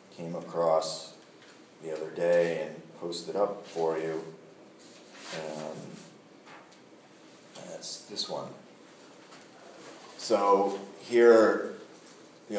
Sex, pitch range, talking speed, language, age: male, 85-100 Hz, 85 wpm, English, 40-59